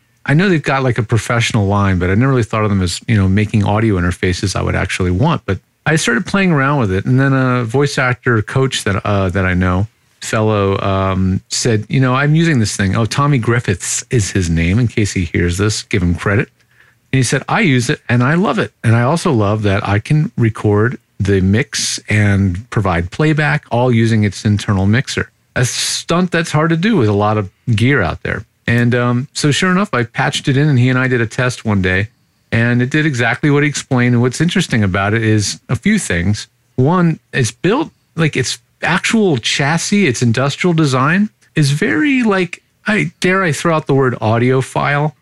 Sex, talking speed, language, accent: male, 215 wpm, English, American